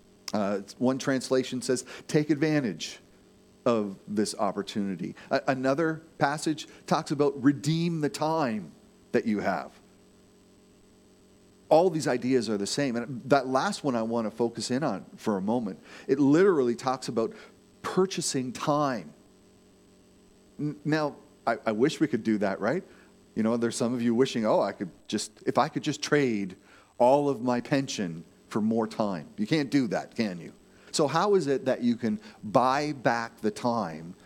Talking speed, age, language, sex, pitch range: 165 wpm, 40-59, English, male, 115-160 Hz